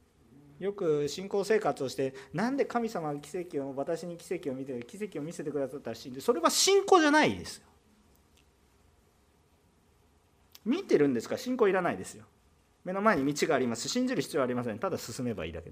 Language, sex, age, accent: Japanese, male, 40-59, native